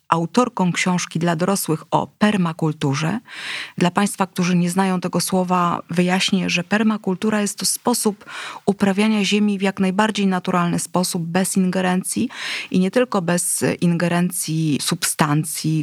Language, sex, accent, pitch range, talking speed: Polish, female, native, 165-195 Hz, 130 wpm